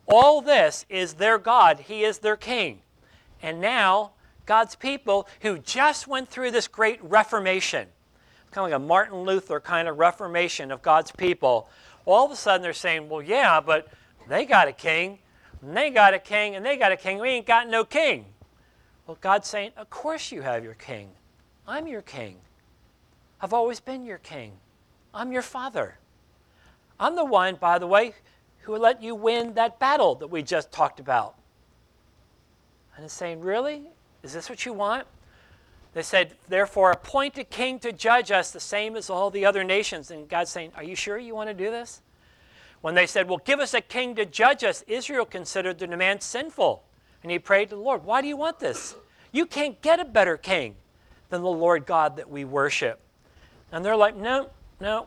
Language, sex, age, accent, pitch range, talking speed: English, male, 50-69, American, 170-235 Hz, 195 wpm